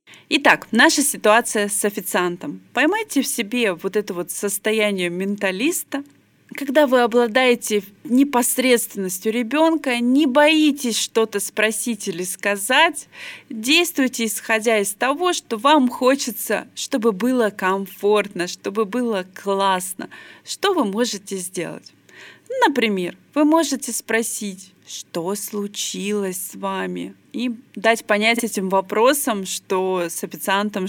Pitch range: 190-240 Hz